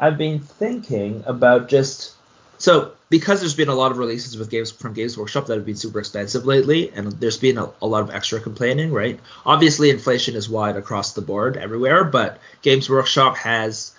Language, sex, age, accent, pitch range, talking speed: English, male, 30-49, American, 110-145 Hz, 195 wpm